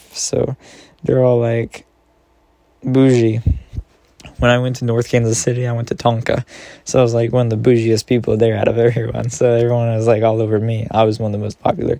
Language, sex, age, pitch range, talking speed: English, male, 10-29, 115-125 Hz, 215 wpm